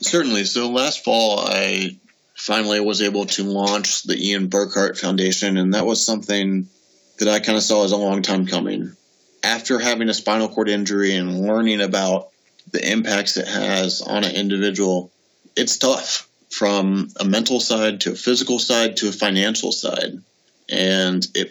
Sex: male